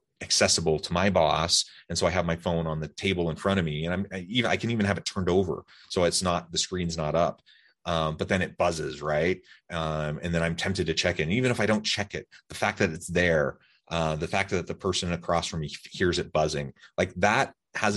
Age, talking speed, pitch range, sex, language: 30-49, 250 wpm, 80-100 Hz, male, English